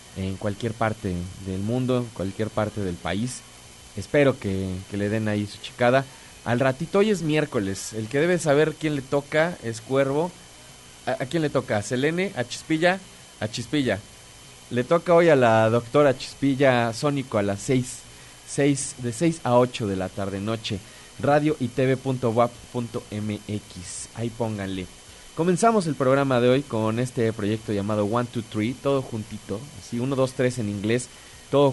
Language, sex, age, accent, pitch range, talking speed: Spanish, male, 20-39, Mexican, 110-140 Hz, 170 wpm